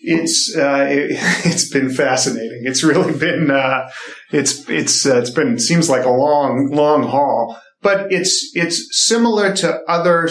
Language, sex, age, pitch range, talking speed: English, male, 40-59, 130-170 Hz, 165 wpm